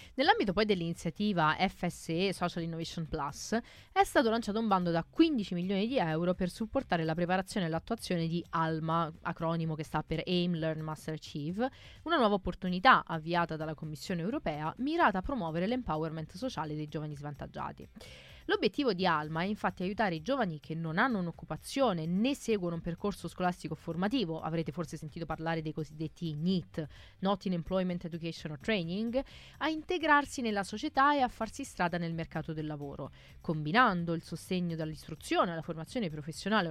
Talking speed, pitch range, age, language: 160 wpm, 160-215 Hz, 20-39, Italian